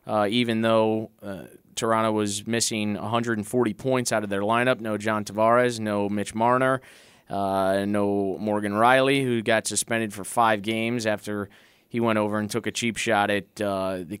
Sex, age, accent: male, 20-39, American